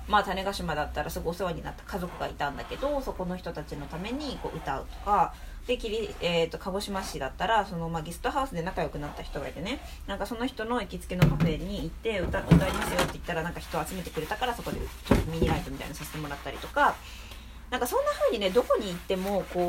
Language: Japanese